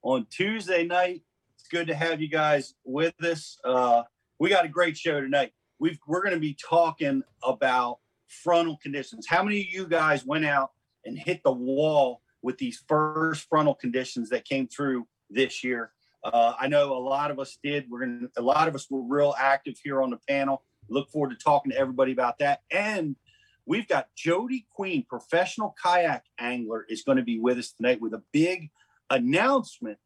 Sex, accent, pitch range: male, American, 130-175 Hz